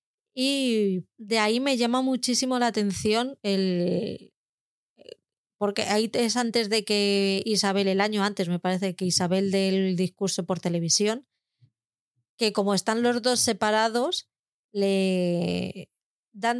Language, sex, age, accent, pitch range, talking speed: Spanish, female, 20-39, Spanish, 190-220 Hz, 125 wpm